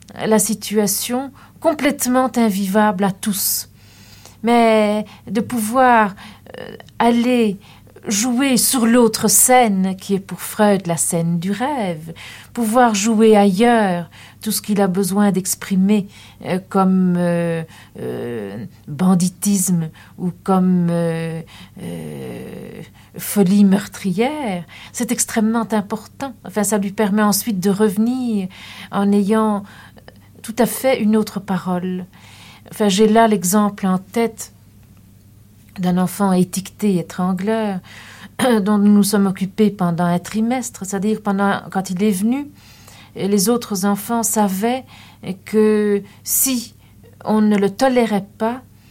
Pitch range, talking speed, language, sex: 185-225 Hz, 115 wpm, French, female